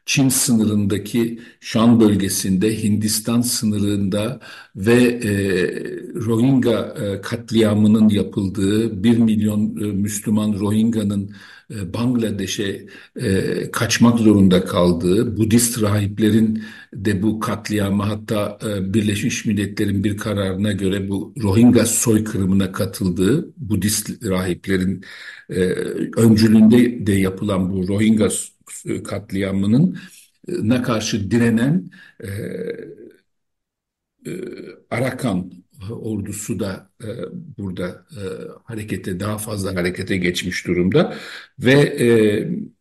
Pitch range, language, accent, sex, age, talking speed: 100-115 Hz, Turkish, native, male, 60-79, 95 wpm